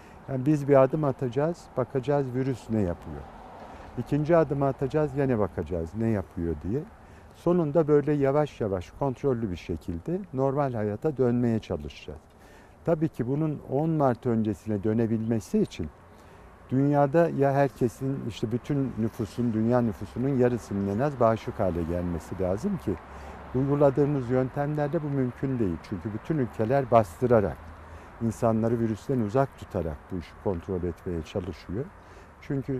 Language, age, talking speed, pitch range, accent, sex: Turkish, 50-69, 130 wpm, 95-135 Hz, native, male